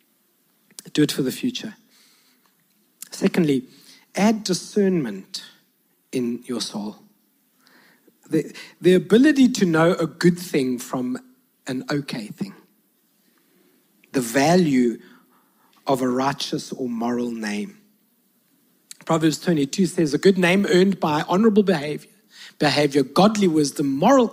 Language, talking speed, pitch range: English, 110 wpm, 145-225 Hz